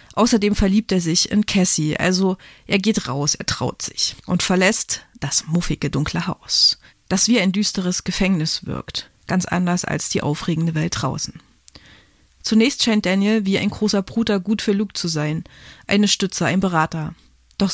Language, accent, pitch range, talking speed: German, German, 175-210 Hz, 165 wpm